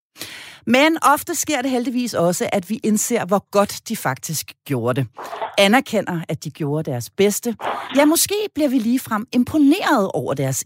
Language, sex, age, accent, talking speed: Danish, female, 40-59, native, 165 wpm